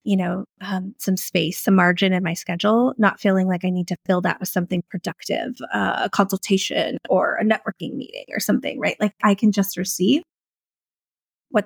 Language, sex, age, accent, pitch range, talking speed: English, female, 20-39, American, 195-245 Hz, 190 wpm